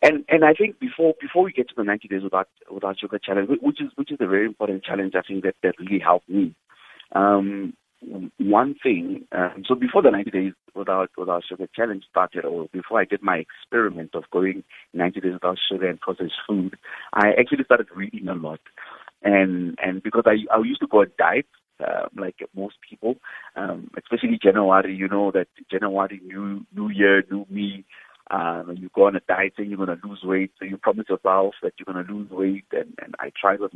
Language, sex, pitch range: English, male, 95-110 Hz